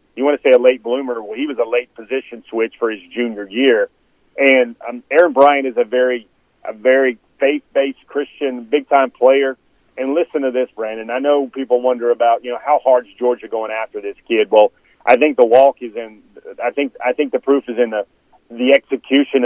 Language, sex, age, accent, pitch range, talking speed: English, male, 40-59, American, 115-135 Hz, 210 wpm